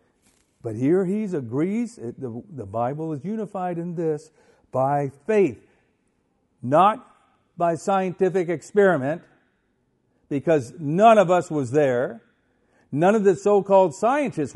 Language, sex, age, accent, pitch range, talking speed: English, male, 50-69, American, 120-175 Hz, 125 wpm